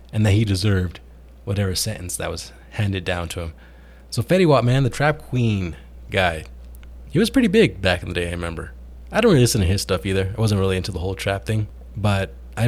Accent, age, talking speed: American, 20-39, 225 wpm